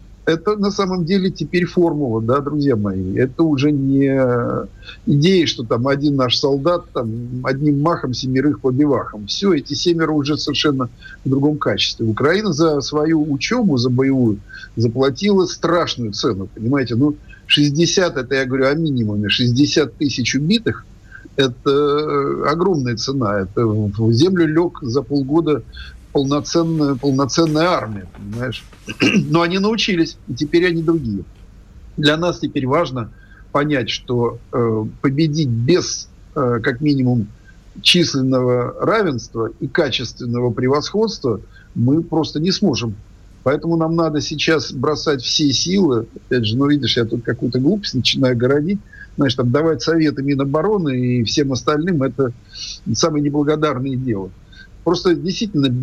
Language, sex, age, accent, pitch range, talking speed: Russian, male, 50-69, native, 120-160 Hz, 130 wpm